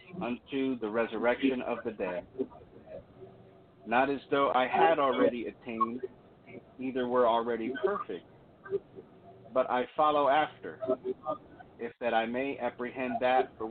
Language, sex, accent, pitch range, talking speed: English, male, American, 115-150 Hz, 125 wpm